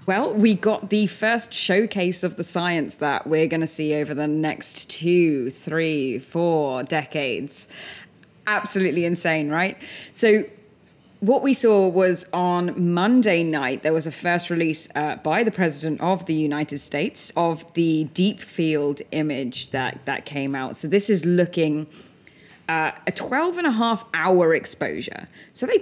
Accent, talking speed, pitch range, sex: British, 160 wpm, 160-215 Hz, female